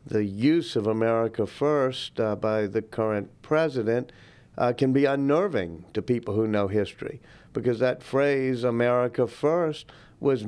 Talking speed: 145 wpm